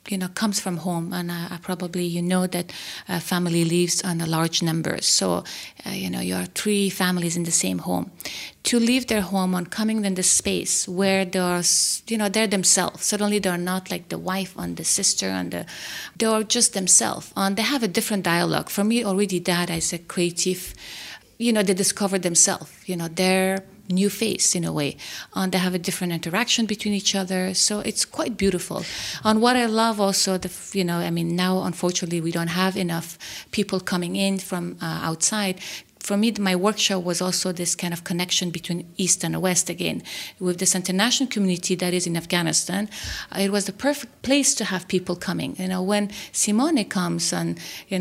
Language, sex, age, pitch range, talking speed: English, female, 30-49, 175-205 Hz, 200 wpm